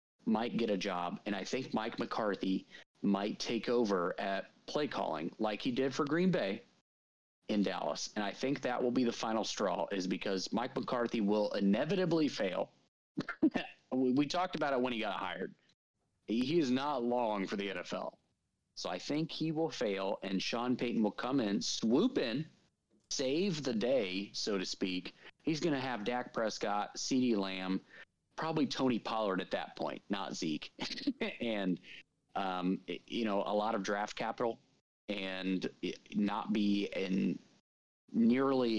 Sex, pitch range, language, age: male, 95-130 Hz, English, 30-49